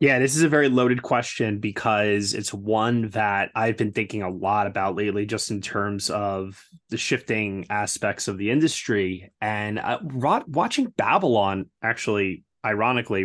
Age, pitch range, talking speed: 20-39, 105-125 Hz, 155 wpm